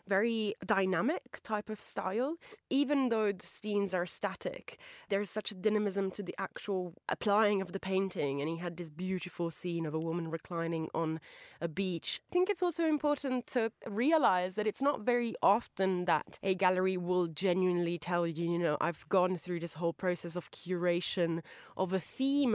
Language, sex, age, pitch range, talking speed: English, female, 20-39, 170-220 Hz, 180 wpm